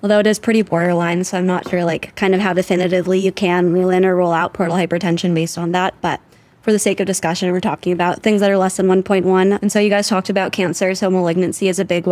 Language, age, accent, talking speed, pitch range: English, 10-29, American, 265 wpm, 175-190 Hz